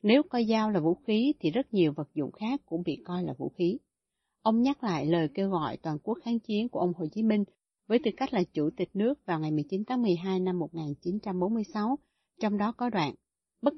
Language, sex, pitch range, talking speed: Vietnamese, female, 170-220 Hz, 225 wpm